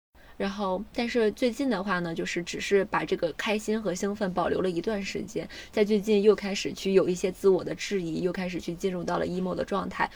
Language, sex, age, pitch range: Chinese, female, 20-39, 175-205 Hz